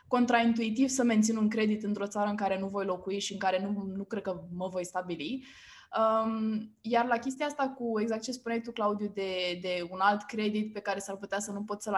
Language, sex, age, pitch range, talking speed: Romanian, female, 20-39, 200-250 Hz, 225 wpm